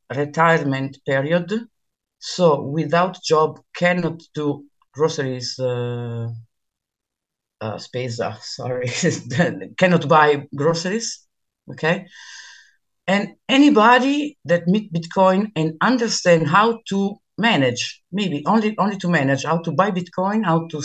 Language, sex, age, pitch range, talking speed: English, female, 50-69, 145-195 Hz, 110 wpm